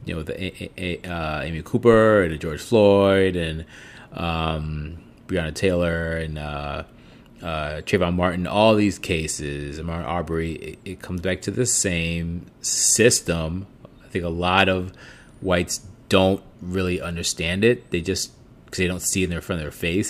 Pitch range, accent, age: 85-100 Hz, American, 30-49